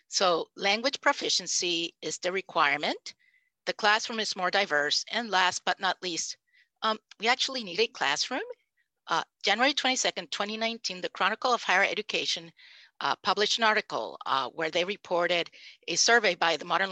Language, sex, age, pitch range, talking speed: English, female, 50-69, 185-250 Hz, 155 wpm